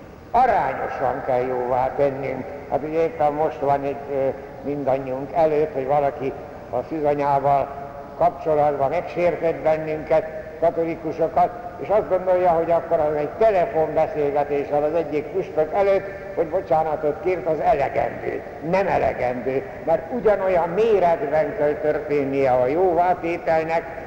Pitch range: 140-175 Hz